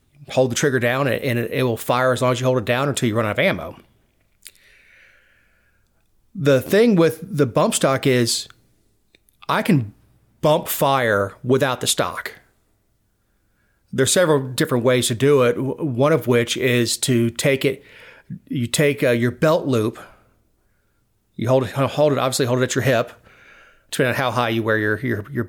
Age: 40-59